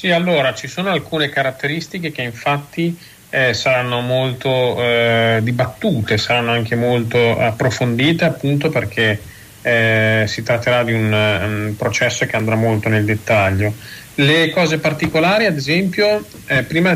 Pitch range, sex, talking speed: 115-145 Hz, male, 135 wpm